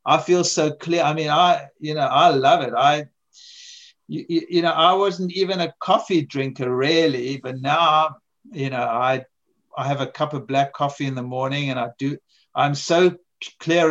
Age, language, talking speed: 50-69, English, 190 wpm